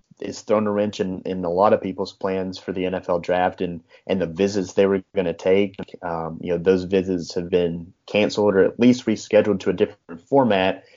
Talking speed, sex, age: 220 wpm, male, 30-49